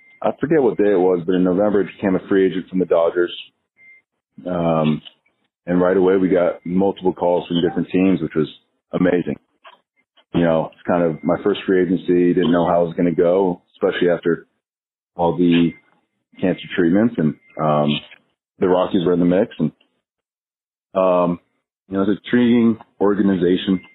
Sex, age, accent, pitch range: male, 30-49, American, 85-100 Hz